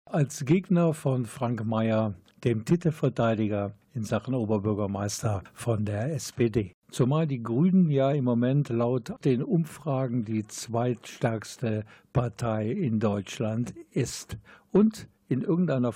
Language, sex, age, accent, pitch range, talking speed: German, male, 50-69, German, 110-140 Hz, 115 wpm